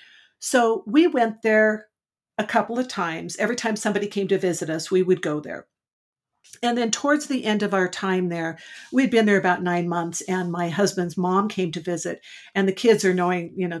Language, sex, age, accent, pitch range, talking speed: English, female, 50-69, American, 185-235 Hz, 210 wpm